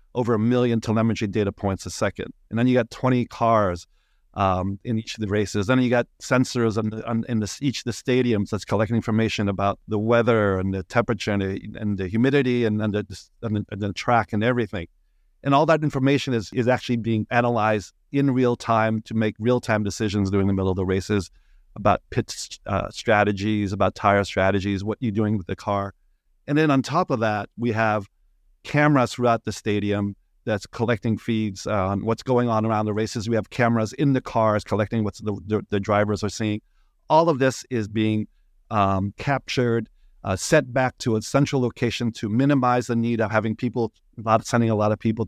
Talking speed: 205 wpm